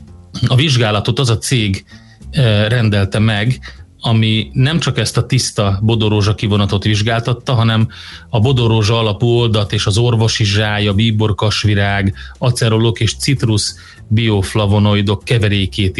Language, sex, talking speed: Hungarian, male, 120 wpm